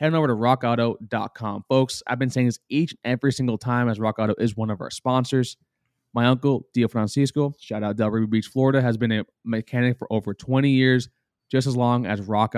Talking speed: 215 wpm